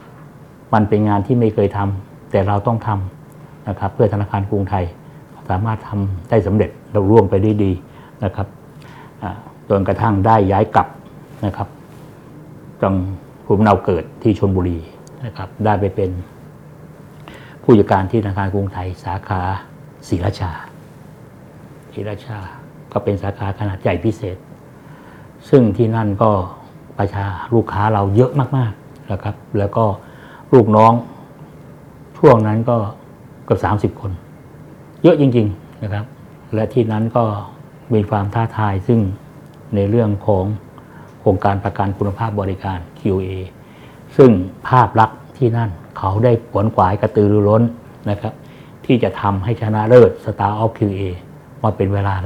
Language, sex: Thai, male